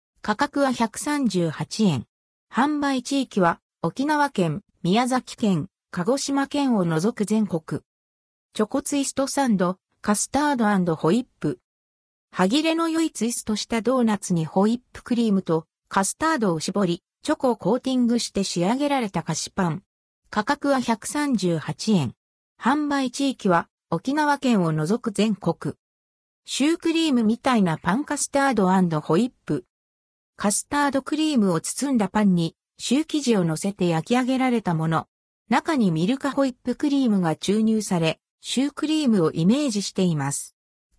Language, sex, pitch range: Japanese, female, 180-275 Hz